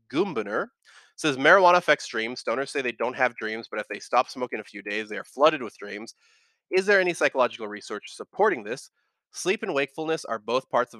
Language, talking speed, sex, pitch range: English, 205 wpm, male, 115-145 Hz